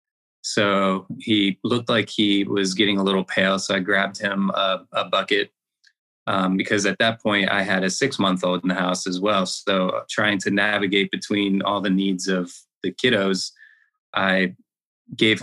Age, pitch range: 20-39, 95-115 Hz